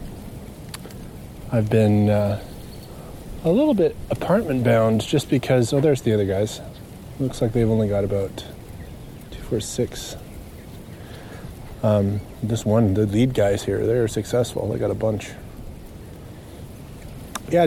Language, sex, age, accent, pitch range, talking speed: English, male, 20-39, American, 105-125 Hz, 130 wpm